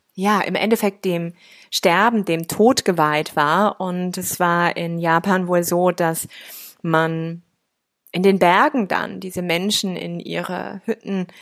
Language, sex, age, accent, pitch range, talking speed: German, female, 20-39, German, 175-210 Hz, 140 wpm